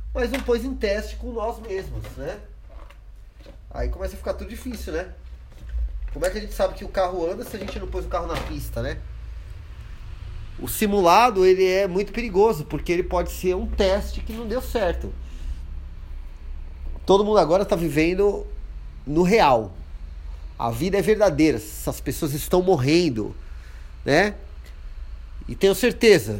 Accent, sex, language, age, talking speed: Brazilian, male, Portuguese, 30-49, 160 wpm